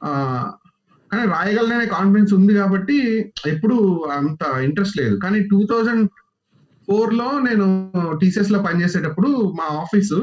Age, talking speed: 30-49, 105 wpm